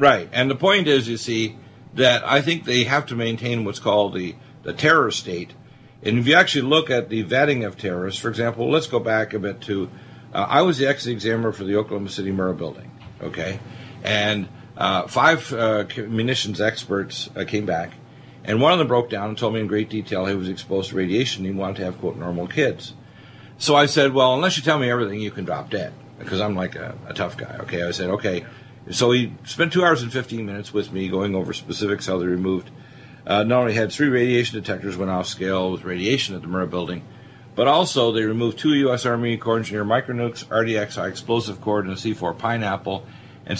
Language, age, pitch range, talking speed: English, 50-69, 100-125 Hz, 215 wpm